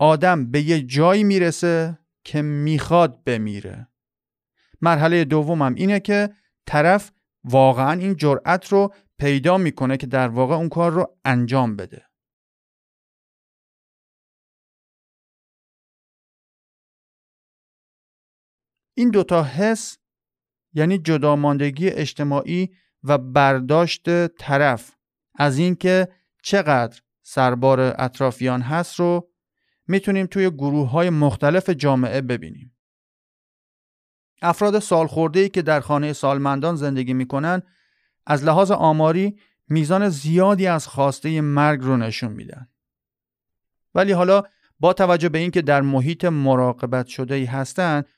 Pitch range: 130-180 Hz